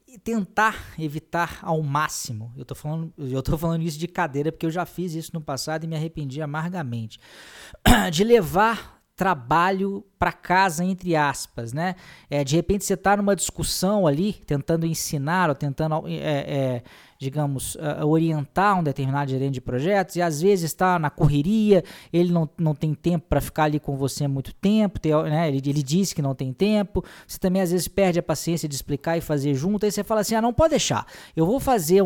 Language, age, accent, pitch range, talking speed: Portuguese, 20-39, Brazilian, 145-190 Hz, 190 wpm